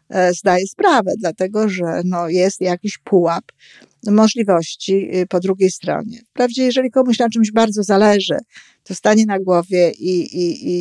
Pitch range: 170-215 Hz